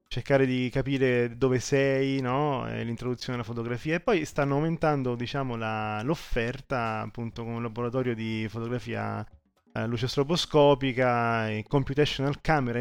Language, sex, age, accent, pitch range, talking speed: Italian, male, 30-49, native, 110-135 Hz, 140 wpm